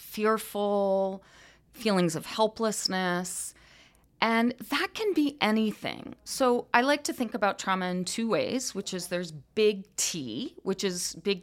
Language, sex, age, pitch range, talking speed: English, female, 30-49, 180-230 Hz, 140 wpm